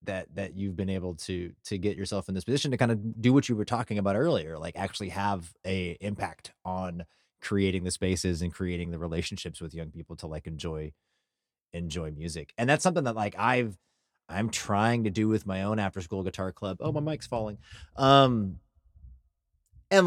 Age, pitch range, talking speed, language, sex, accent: 30-49, 90-110 Hz, 195 wpm, English, male, American